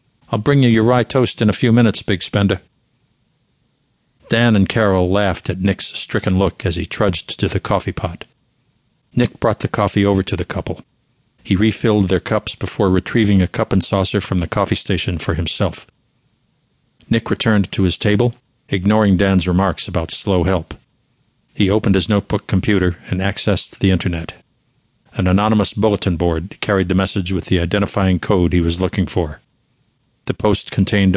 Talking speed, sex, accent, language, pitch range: 170 wpm, male, American, English, 95-120 Hz